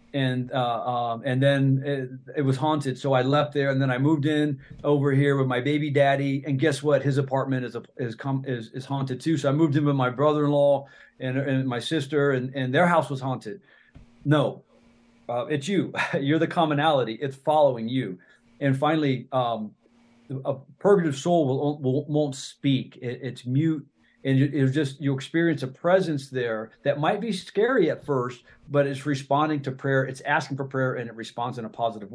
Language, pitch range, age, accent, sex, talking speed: English, 125-145 Hz, 40-59, American, male, 200 wpm